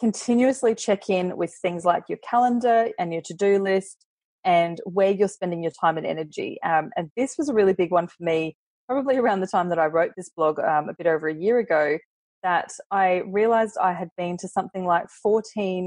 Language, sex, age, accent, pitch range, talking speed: English, female, 20-39, Australian, 160-195 Hz, 210 wpm